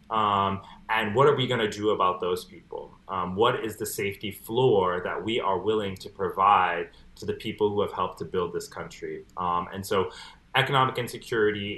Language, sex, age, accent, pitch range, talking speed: English, male, 30-49, American, 95-115 Hz, 195 wpm